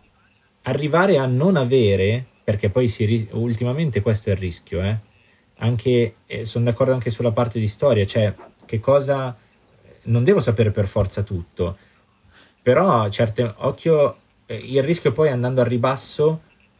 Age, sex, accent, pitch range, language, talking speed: 20-39, male, native, 105-125 Hz, Italian, 145 wpm